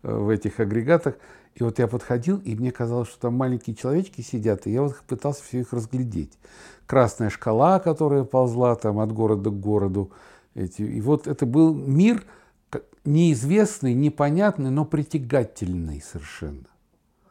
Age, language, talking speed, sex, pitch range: 60-79, Russian, 140 wpm, male, 115-165 Hz